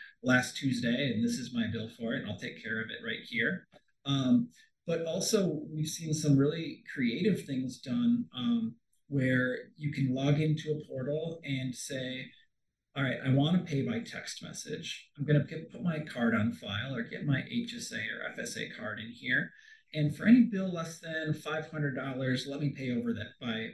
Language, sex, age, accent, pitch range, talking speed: English, male, 30-49, American, 125-165 Hz, 195 wpm